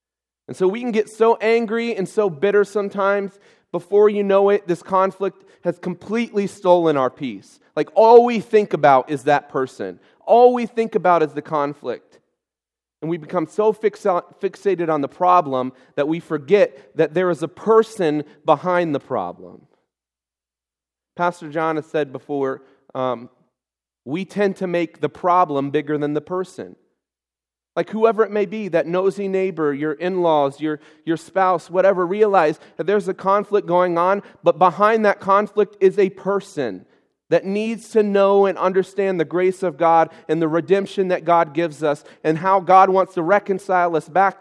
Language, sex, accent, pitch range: English, male, American, 155-200 Hz